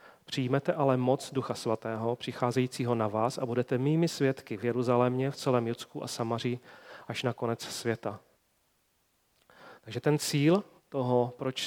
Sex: male